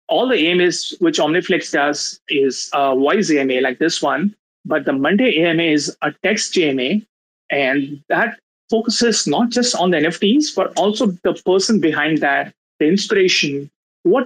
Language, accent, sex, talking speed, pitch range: English, Indian, male, 160 wpm, 155-210 Hz